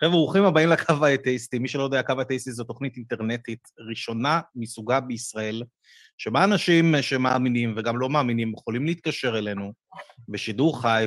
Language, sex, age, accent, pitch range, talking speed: Hebrew, male, 30-49, native, 110-140 Hz, 145 wpm